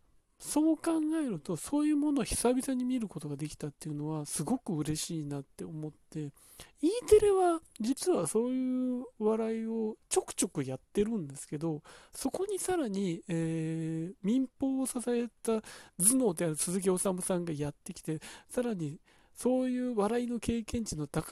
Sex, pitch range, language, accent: male, 165-260 Hz, Japanese, native